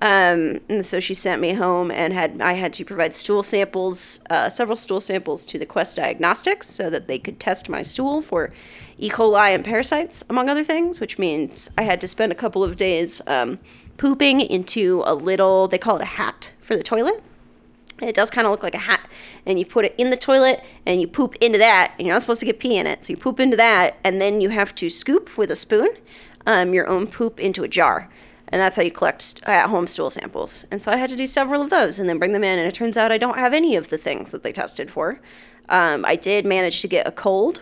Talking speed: 250 wpm